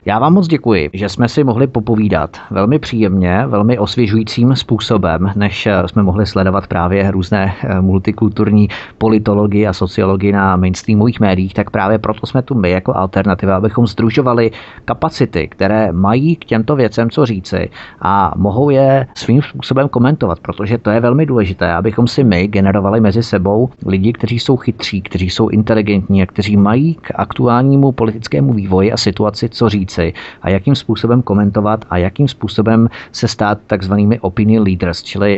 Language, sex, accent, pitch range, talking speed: Czech, male, native, 100-120 Hz, 160 wpm